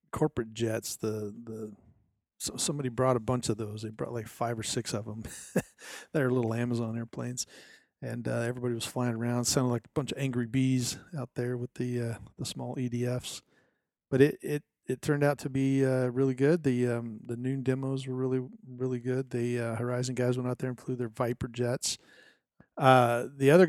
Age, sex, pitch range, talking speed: 40-59, male, 115-130 Hz, 200 wpm